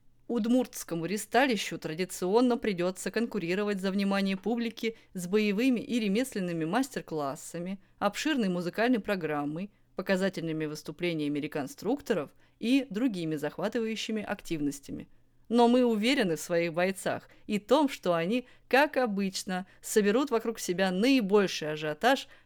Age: 20-39